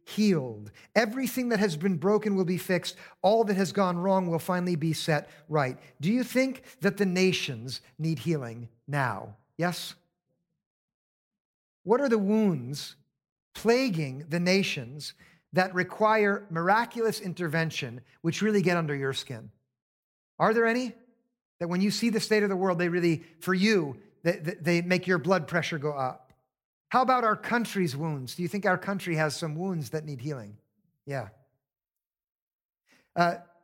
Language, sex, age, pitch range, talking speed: English, male, 50-69, 150-200 Hz, 155 wpm